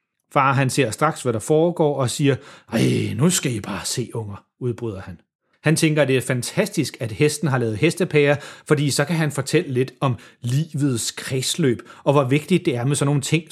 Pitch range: 120-160 Hz